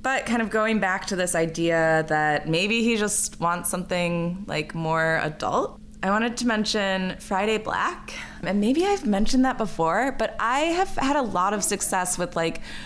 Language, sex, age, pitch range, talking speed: English, female, 20-39, 160-205 Hz, 180 wpm